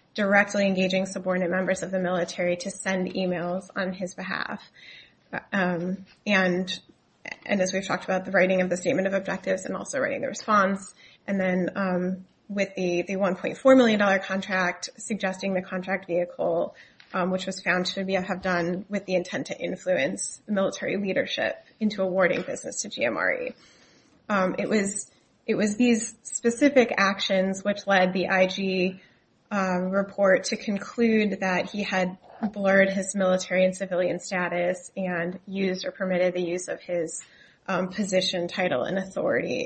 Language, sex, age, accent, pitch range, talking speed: English, female, 20-39, American, 185-205 Hz, 155 wpm